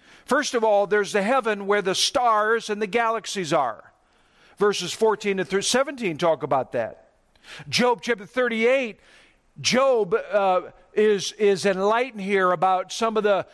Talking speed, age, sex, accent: 150 wpm, 50-69, male, American